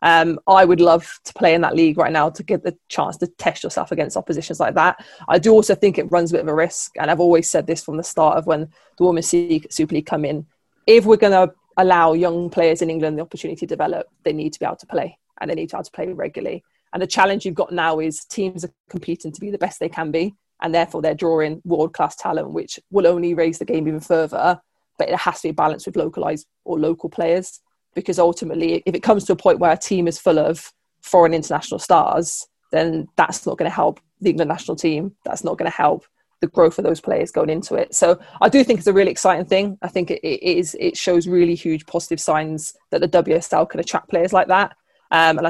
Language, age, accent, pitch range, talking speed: English, 20-39, British, 160-185 Hz, 250 wpm